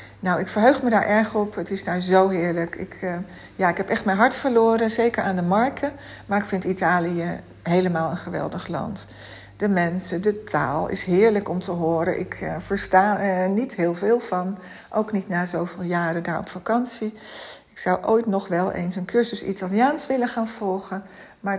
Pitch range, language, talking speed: 175-215 Hz, Dutch, 195 wpm